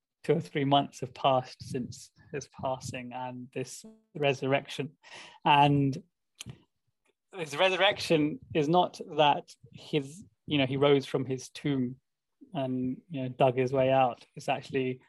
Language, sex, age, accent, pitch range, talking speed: English, male, 20-39, British, 130-150 Hz, 140 wpm